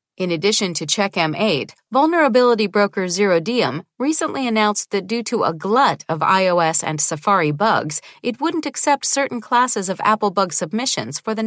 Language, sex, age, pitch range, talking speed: English, female, 40-59, 170-240 Hz, 160 wpm